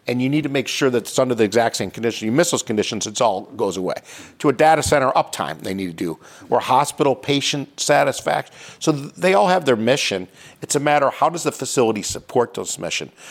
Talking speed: 230 wpm